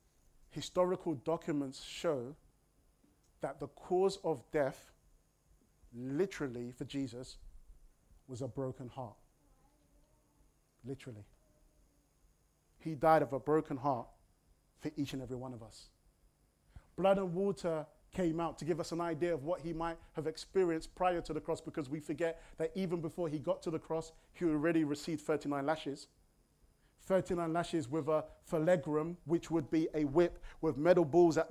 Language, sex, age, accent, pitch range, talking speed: English, male, 30-49, British, 150-175 Hz, 150 wpm